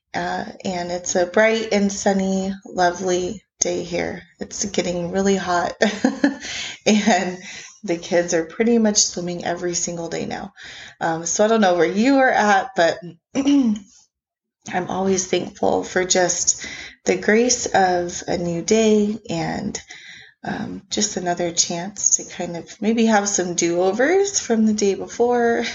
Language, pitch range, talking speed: English, 175-225 Hz, 145 wpm